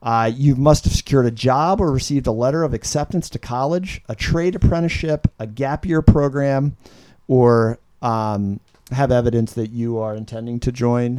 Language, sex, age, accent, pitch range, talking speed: English, male, 40-59, American, 110-140 Hz, 170 wpm